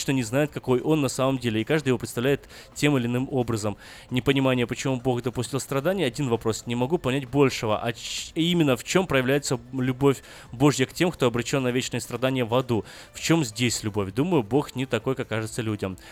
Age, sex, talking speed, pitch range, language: 20-39, male, 200 wpm, 115-140 Hz, Russian